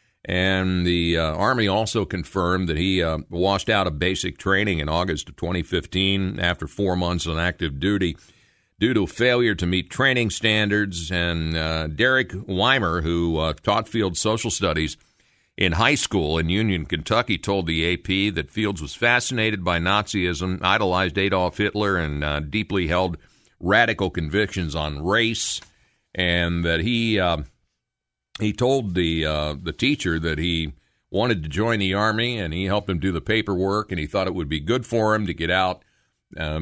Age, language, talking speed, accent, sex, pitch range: 50-69, English, 170 wpm, American, male, 80-105 Hz